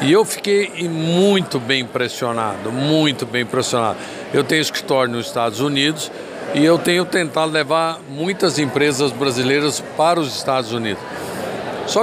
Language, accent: Portuguese, Brazilian